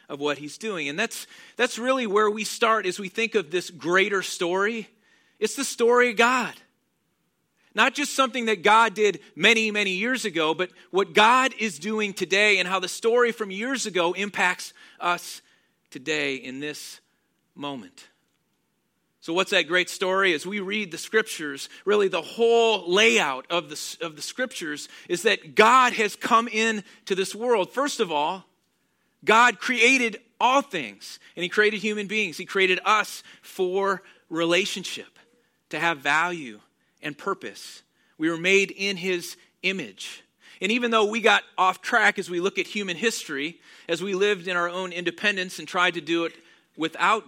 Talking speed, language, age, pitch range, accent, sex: 170 wpm, English, 40-59, 180-225 Hz, American, male